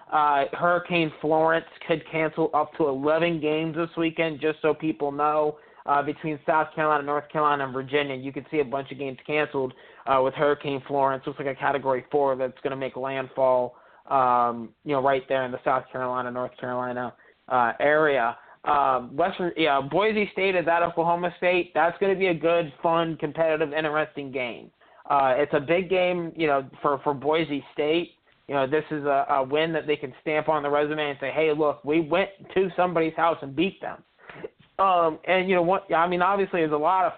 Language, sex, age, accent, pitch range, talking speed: English, male, 20-39, American, 140-160 Hz, 205 wpm